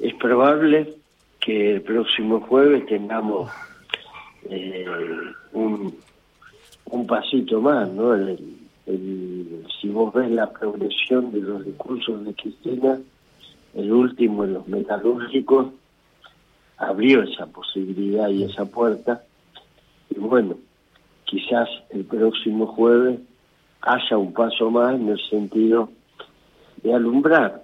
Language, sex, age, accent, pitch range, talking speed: Spanish, male, 50-69, Argentinian, 100-125 Hz, 105 wpm